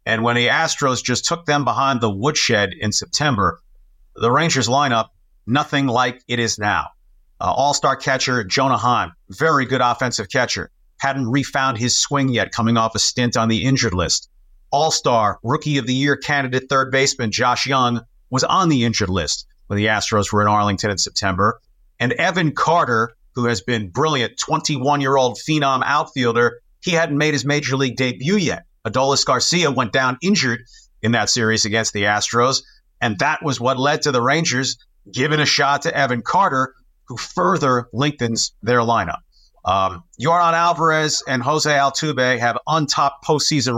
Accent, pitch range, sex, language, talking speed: American, 115-140 Hz, male, English, 165 wpm